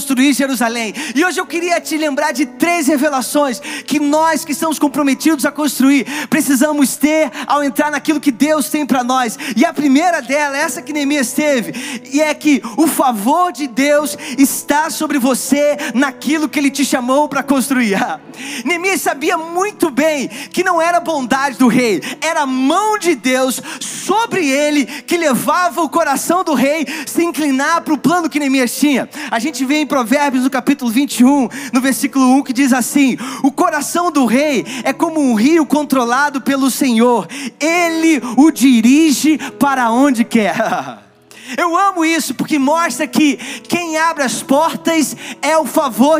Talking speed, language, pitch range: 170 wpm, Portuguese, 270-320 Hz